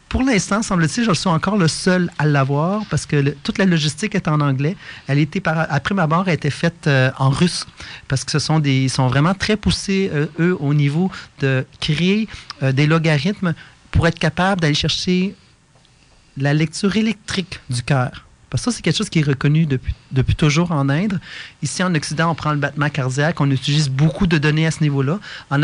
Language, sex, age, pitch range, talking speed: French, male, 40-59, 145-180 Hz, 205 wpm